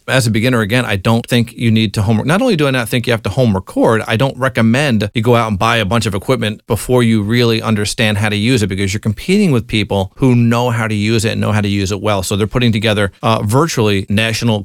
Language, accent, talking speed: English, American, 275 wpm